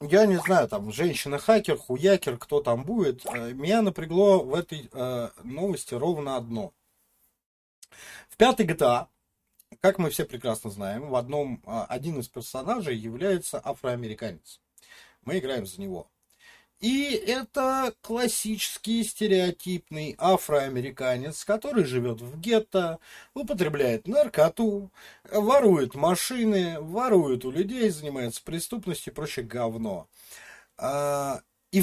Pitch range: 125-200 Hz